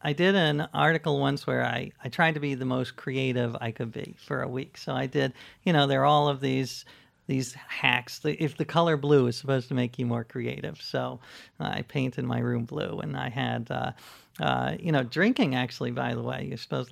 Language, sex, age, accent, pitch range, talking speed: English, male, 40-59, American, 125-170 Hz, 225 wpm